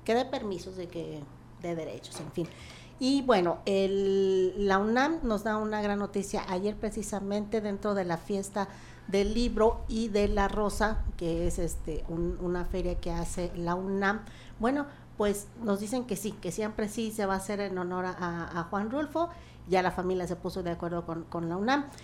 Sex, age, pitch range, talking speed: female, 50-69, 175-210 Hz, 195 wpm